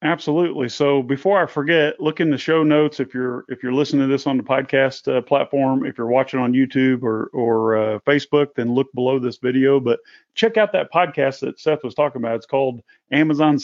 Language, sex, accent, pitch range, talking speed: English, male, American, 130-165 Hz, 215 wpm